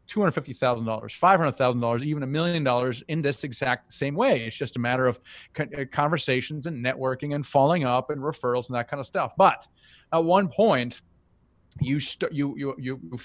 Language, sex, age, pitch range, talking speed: English, male, 40-59, 125-155 Hz, 170 wpm